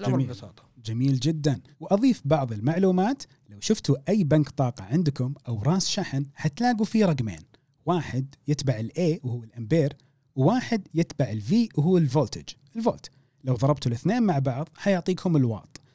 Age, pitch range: 30-49, 135-185 Hz